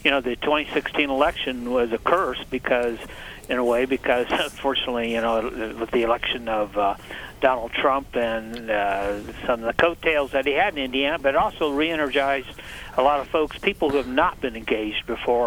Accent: American